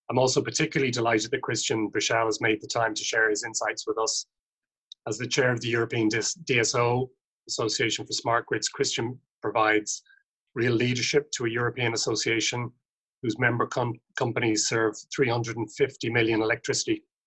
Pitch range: 115-140 Hz